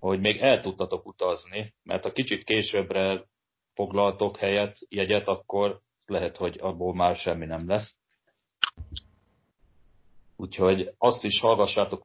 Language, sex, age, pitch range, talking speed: Hungarian, male, 40-59, 95-110 Hz, 120 wpm